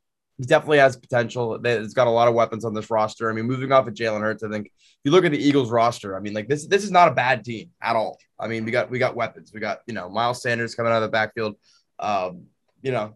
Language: English